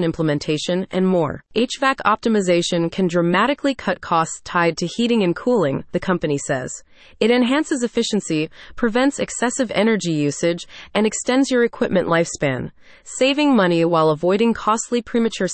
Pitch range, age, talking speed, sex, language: 170-240 Hz, 30-49, 135 wpm, female, English